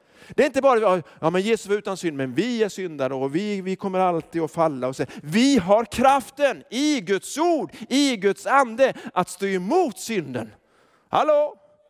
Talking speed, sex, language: 175 wpm, male, Swedish